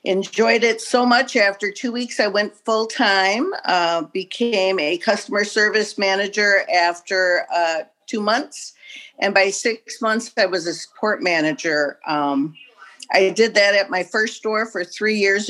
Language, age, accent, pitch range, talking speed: English, 50-69, American, 180-225 Hz, 150 wpm